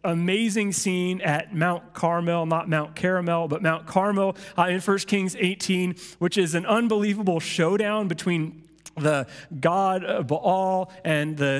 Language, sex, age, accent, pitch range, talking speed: English, male, 30-49, American, 160-200 Hz, 145 wpm